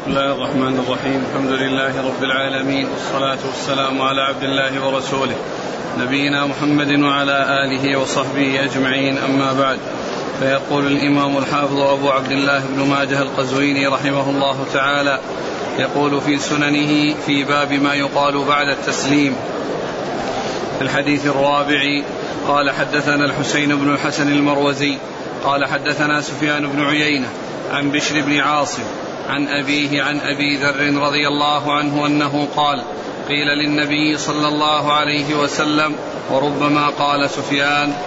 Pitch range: 140-150 Hz